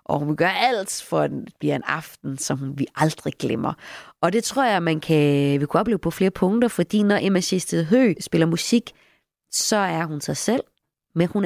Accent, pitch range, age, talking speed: native, 150-205 Hz, 30-49, 210 wpm